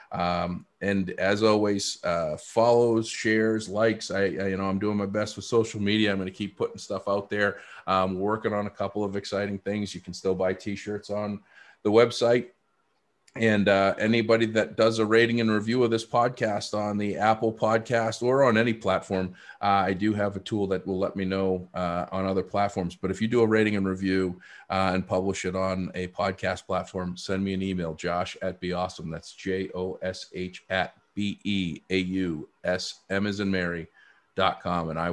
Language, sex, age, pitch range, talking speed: English, male, 30-49, 90-105 Hz, 200 wpm